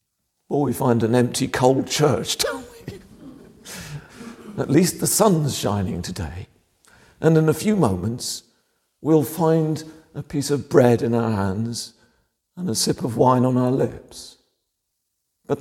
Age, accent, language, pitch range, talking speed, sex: 50-69, British, English, 115-170 Hz, 145 wpm, male